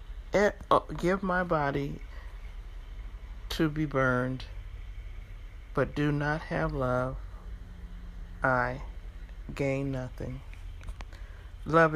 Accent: American